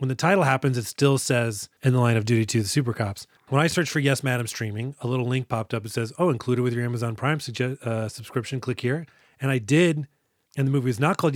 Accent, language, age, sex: American, English, 30-49, male